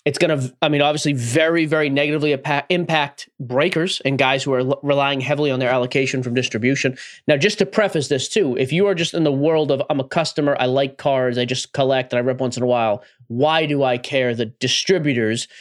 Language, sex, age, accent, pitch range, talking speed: English, male, 30-49, American, 130-165 Hz, 225 wpm